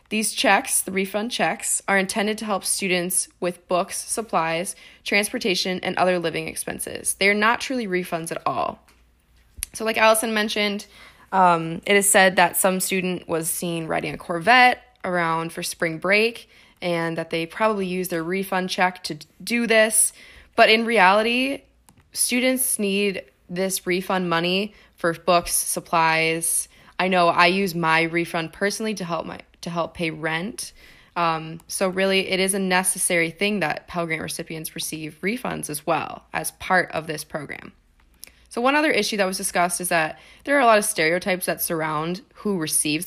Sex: female